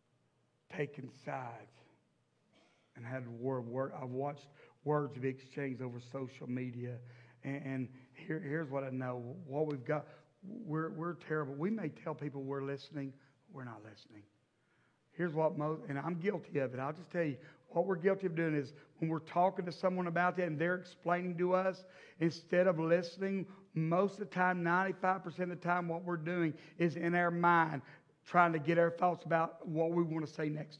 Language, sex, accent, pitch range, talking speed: English, male, American, 140-180 Hz, 185 wpm